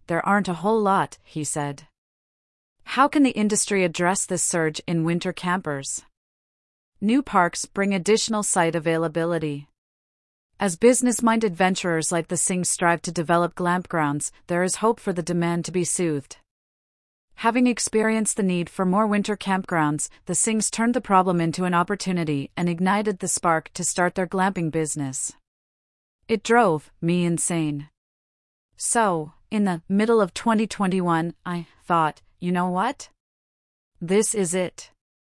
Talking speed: 145 wpm